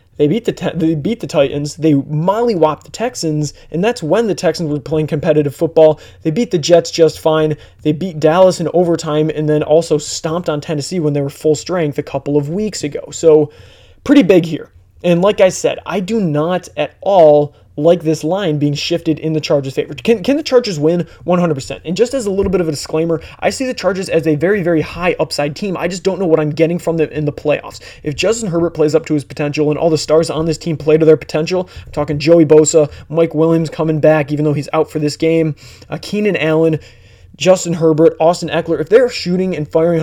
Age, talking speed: 20-39, 230 wpm